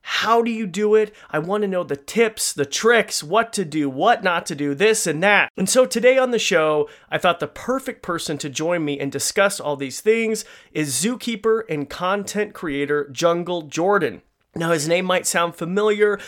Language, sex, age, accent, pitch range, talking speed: English, male, 30-49, American, 145-200 Hz, 205 wpm